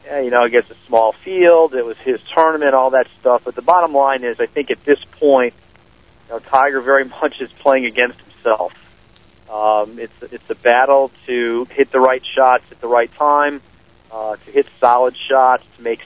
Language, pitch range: English, 115-140 Hz